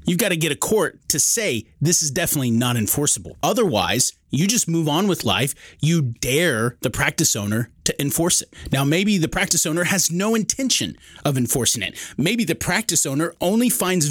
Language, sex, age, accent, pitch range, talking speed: English, male, 30-49, American, 120-180 Hz, 190 wpm